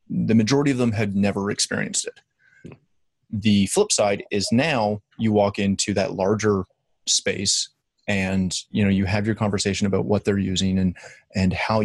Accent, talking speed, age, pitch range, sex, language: American, 165 wpm, 30-49, 100-120 Hz, male, English